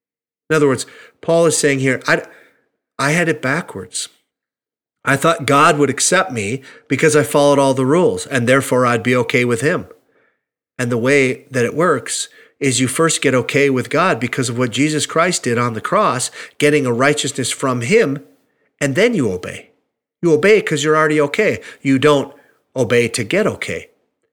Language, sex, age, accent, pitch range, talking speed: English, male, 40-59, American, 120-160 Hz, 185 wpm